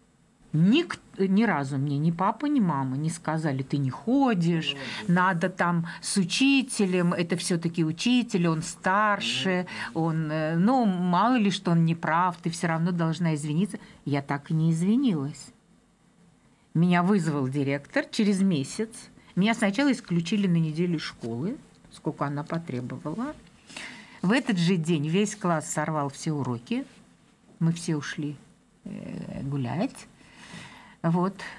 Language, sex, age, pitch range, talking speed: Russian, female, 50-69, 150-205 Hz, 130 wpm